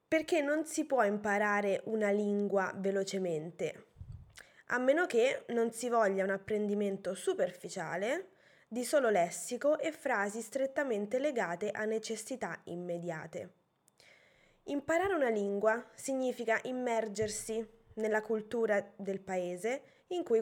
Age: 20-39